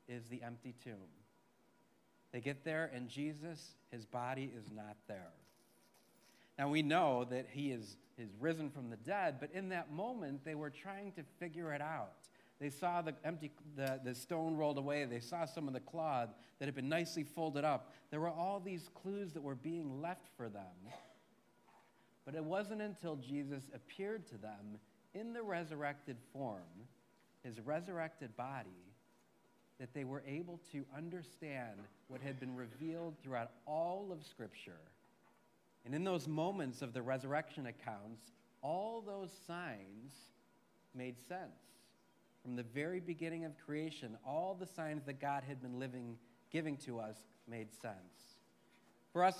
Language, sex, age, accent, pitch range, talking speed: English, male, 40-59, American, 120-165 Hz, 160 wpm